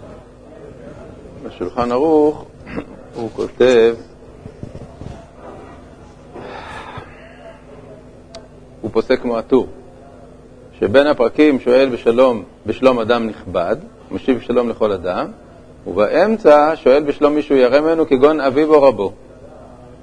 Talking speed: 85 wpm